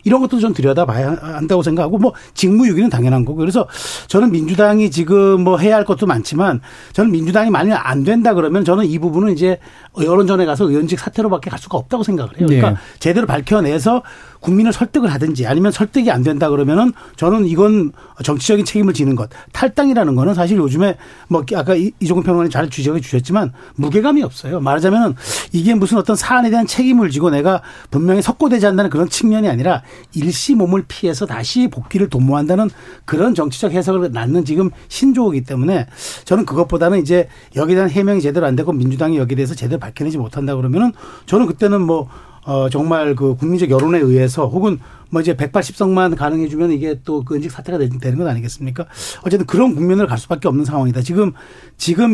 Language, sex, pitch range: Korean, male, 145-200 Hz